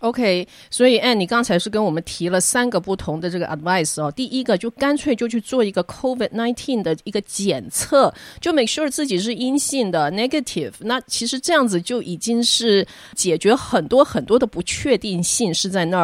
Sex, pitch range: female, 175-235 Hz